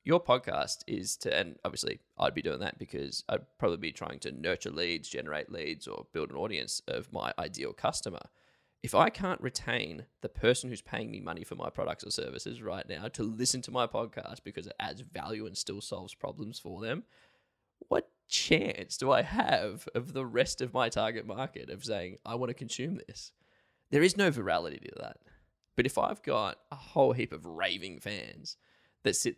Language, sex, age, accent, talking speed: English, male, 10-29, Australian, 200 wpm